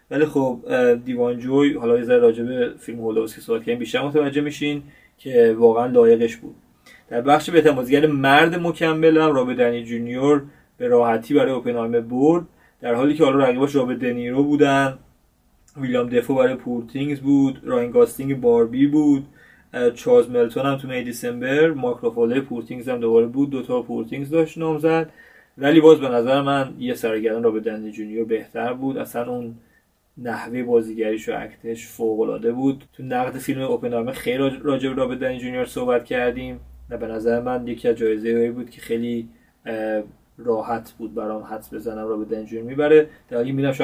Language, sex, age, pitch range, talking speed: Persian, male, 30-49, 115-155 Hz, 170 wpm